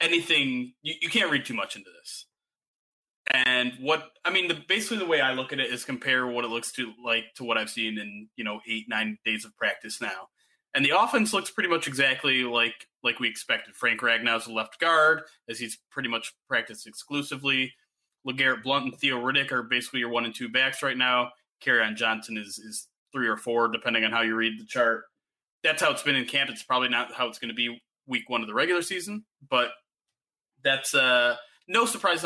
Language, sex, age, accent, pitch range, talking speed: English, male, 20-39, American, 120-155 Hz, 215 wpm